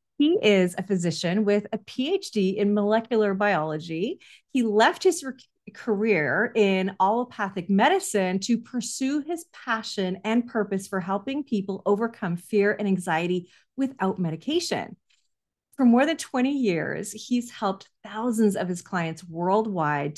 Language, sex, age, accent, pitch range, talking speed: English, female, 30-49, American, 190-260 Hz, 130 wpm